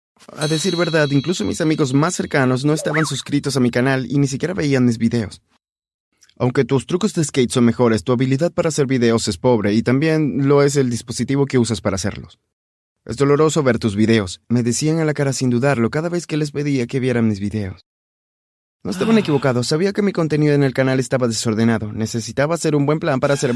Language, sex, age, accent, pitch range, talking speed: Spanish, male, 20-39, Mexican, 115-155 Hz, 215 wpm